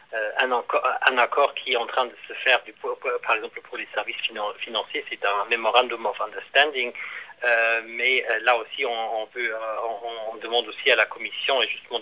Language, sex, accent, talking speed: French, male, French, 170 wpm